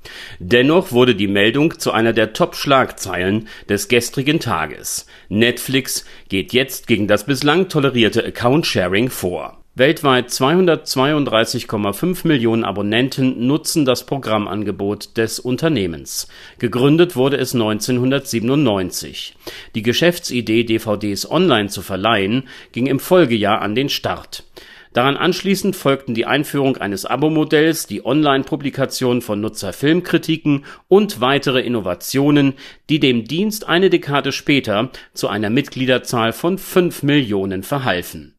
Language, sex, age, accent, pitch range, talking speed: German, male, 40-59, German, 110-145 Hz, 115 wpm